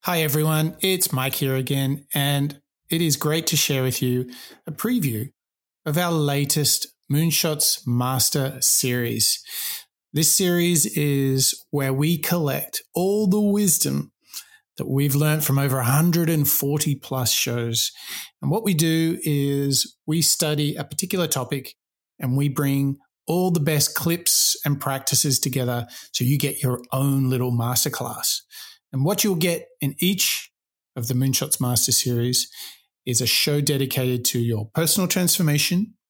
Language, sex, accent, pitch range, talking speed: English, male, Australian, 130-165 Hz, 140 wpm